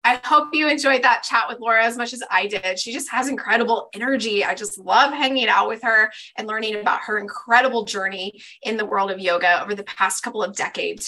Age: 20-39